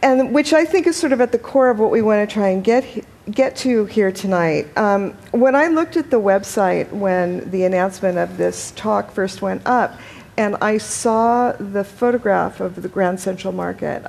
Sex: female